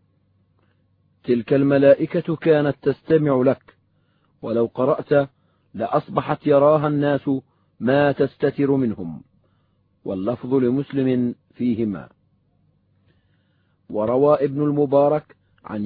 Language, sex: Arabic, male